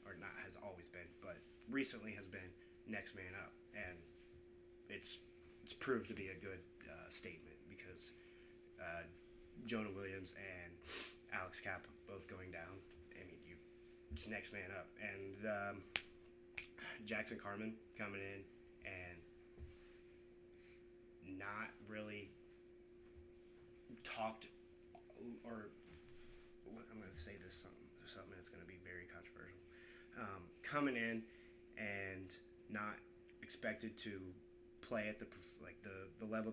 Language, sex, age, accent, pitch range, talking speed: English, male, 20-39, American, 90-120 Hz, 130 wpm